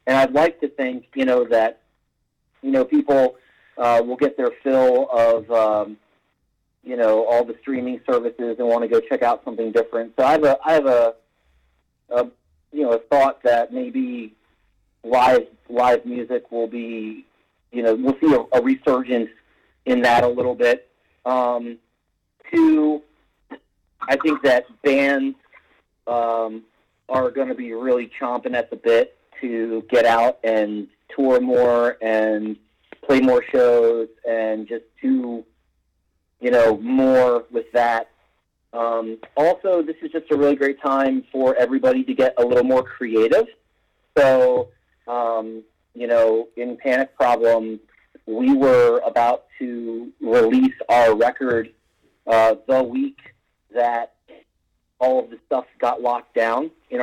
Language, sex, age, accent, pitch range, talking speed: English, male, 40-59, American, 115-135 Hz, 145 wpm